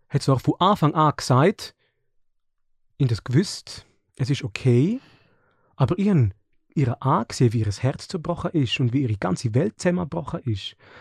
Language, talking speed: German, 155 wpm